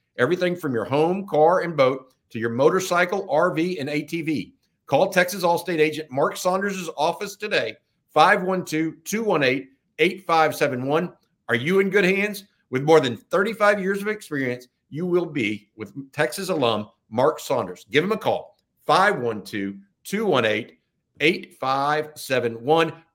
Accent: American